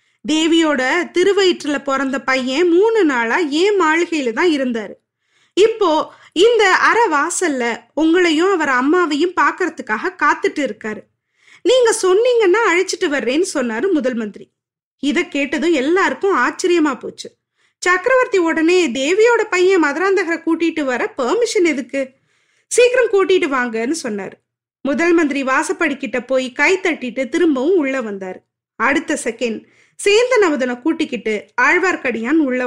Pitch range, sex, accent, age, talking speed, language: 265-375 Hz, female, native, 20-39, 105 wpm, Tamil